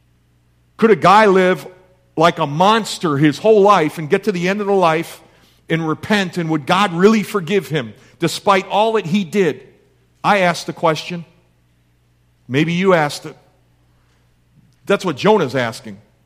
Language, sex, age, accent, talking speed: English, male, 50-69, American, 160 wpm